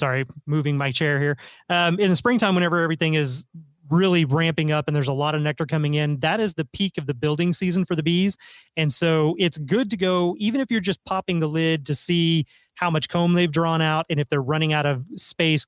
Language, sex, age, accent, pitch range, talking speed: English, male, 30-49, American, 145-170 Hz, 235 wpm